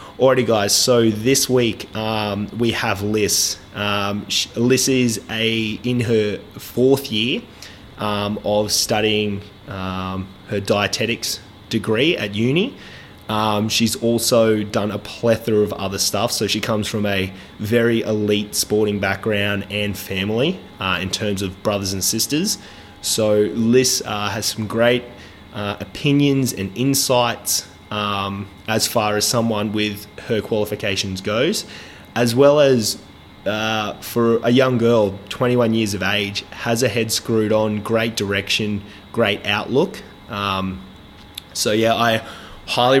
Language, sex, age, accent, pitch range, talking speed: English, male, 20-39, Australian, 100-115 Hz, 140 wpm